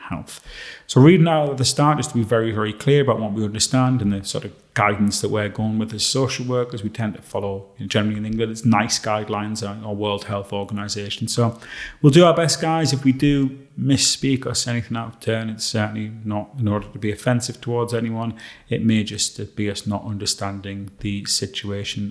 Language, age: English, 30-49